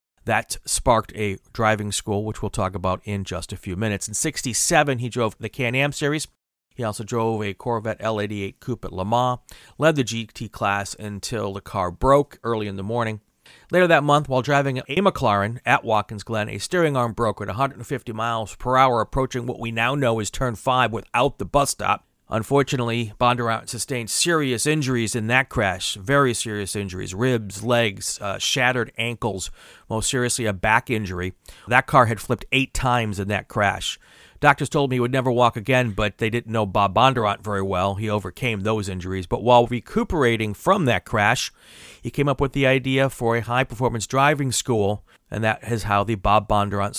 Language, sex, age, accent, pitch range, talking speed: English, male, 40-59, American, 105-130 Hz, 190 wpm